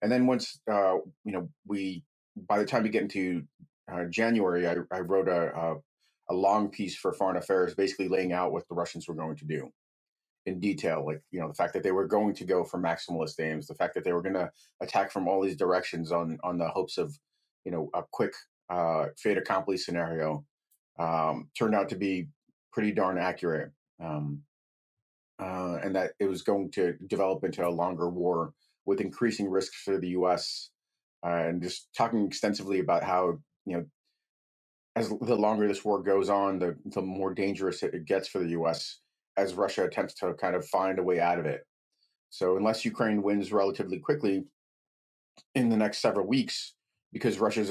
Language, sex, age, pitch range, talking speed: English, male, 30-49, 85-100 Hz, 195 wpm